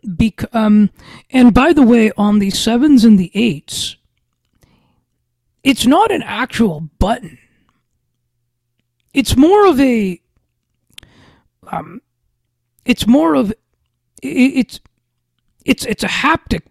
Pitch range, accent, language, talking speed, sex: 170-235 Hz, American, English, 110 wpm, male